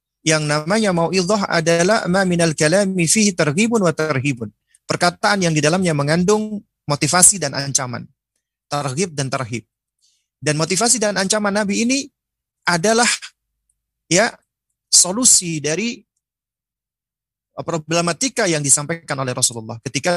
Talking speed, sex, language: 115 wpm, male, Indonesian